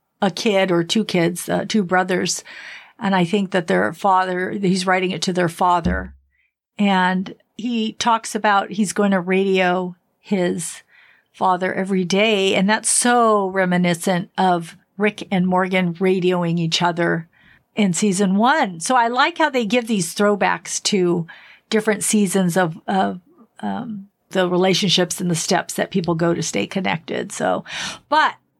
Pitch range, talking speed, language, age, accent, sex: 180-230 Hz, 155 wpm, English, 50-69, American, female